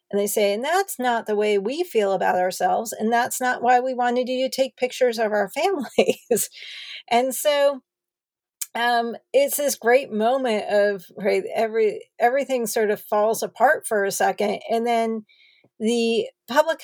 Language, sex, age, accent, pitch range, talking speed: English, female, 50-69, American, 200-245 Hz, 170 wpm